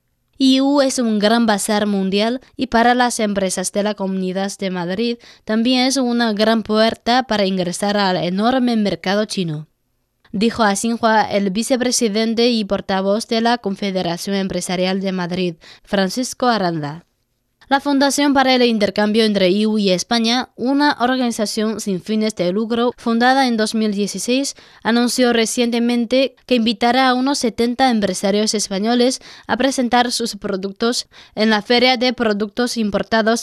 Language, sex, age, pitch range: Chinese, female, 20-39, 195-245 Hz